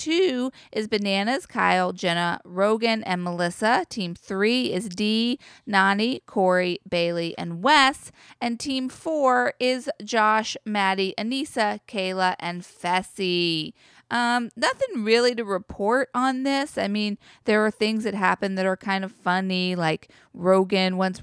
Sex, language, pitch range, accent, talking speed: female, English, 180-235 Hz, American, 140 wpm